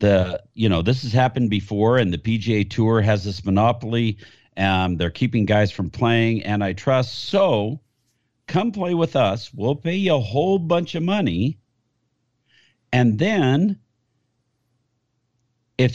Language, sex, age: English, male, 50-69